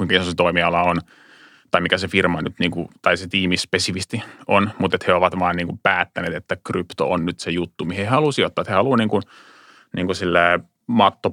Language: Finnish